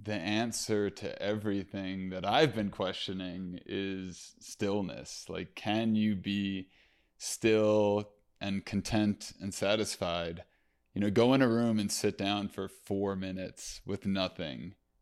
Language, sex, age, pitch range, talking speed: English, male, 20-39, 95-115 Hz, 130 wpm